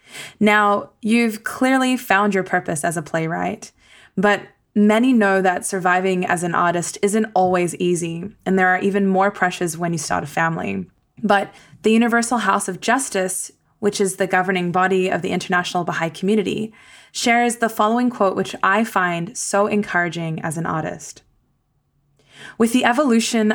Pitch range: 170-205 Hz